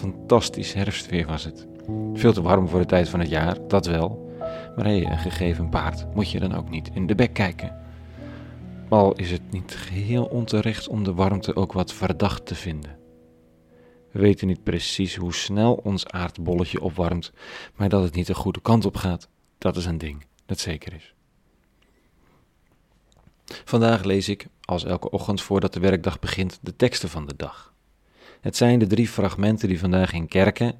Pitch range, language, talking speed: 85-105 Hz, Dutch, 175 wpm